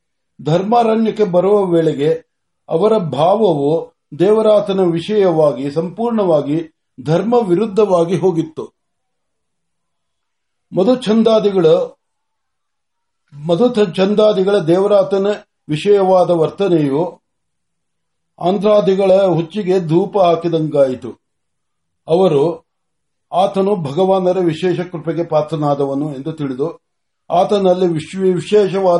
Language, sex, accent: Marathi, male, native